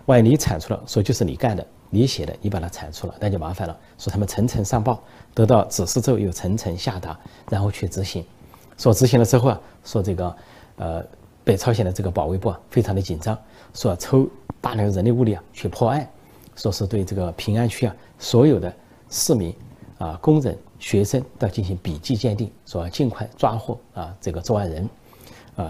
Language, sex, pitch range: Chinese, male, 95-120 Hz